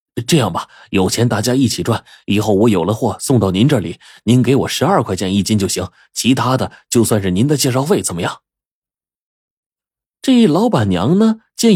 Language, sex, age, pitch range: Chinese, male, 30-49, 90-135 Hz